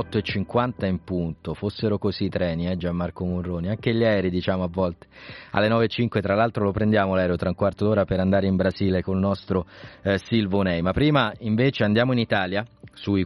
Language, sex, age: Italian, male, 30-49